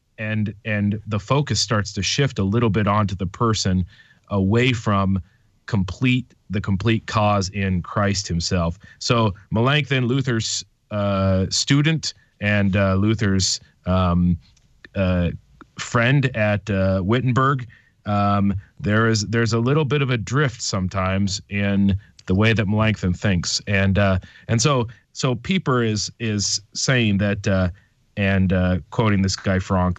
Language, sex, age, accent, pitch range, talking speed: English, male, 30-49, American, 95-120 Hz, 140 wpm